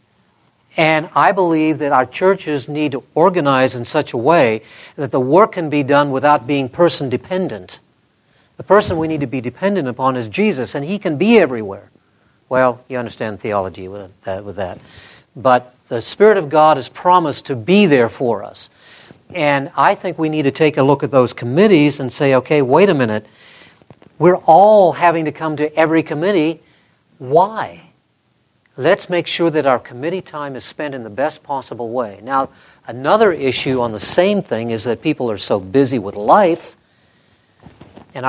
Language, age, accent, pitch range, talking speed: English, 60-79, American, 115-160 Hz, 175 wpm